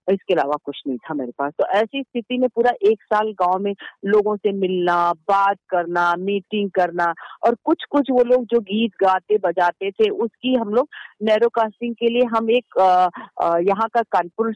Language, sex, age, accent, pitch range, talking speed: Hindi, female, 40-59, native, 185-230 Hz, 185 wpm